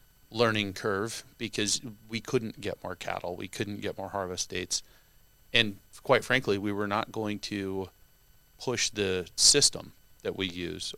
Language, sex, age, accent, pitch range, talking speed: English, male, 30-49, American, 95-105 Hz, 155 wpm